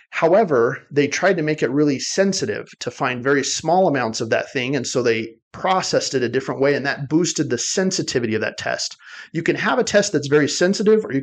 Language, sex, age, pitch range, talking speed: English, male, 30-49, 125-160 Hz, 225 wpm